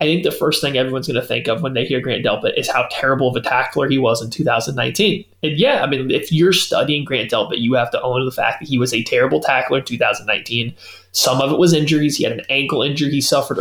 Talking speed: 265 wpm